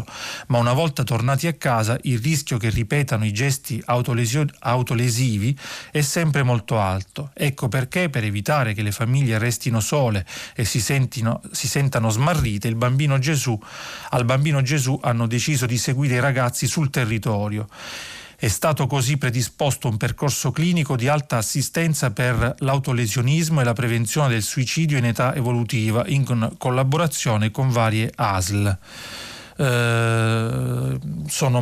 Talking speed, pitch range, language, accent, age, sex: 130 wpm, 115-135 Hz, Italian, native, 40-59, male